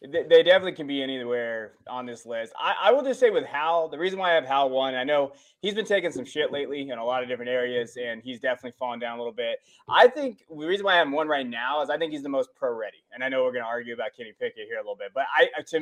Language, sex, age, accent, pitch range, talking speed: English, male, 20-39, American, 135-185 Hz, 295 wpm